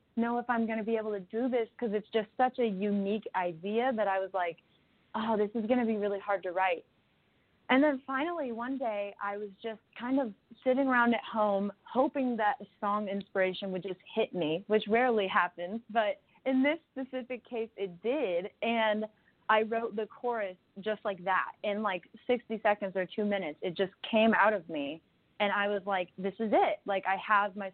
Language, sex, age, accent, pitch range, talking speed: English, female, 20-39, American, 195-235 Hz, 205 wpm